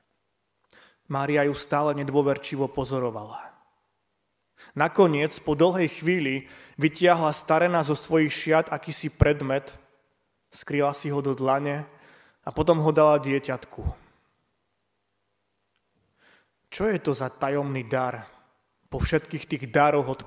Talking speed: 110 wpm